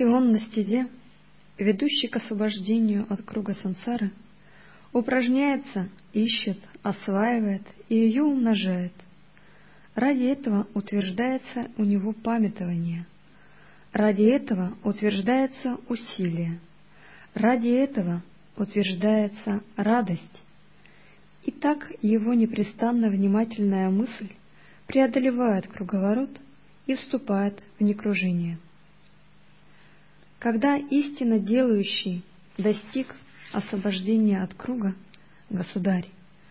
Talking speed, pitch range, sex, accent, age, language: 80 wpm, 190-240 Hz, female, native, 20-39, Russian